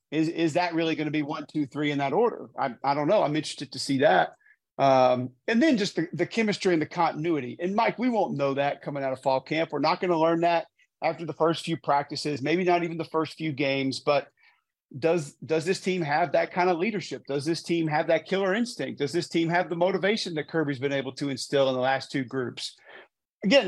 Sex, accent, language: male, American, English